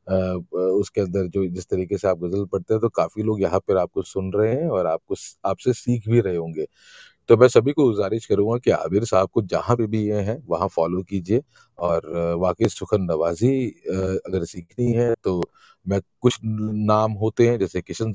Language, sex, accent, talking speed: Hindi, male, native, 200 wpm